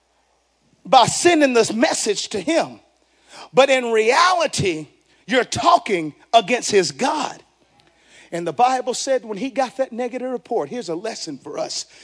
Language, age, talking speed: English, 40-59, 145 wpm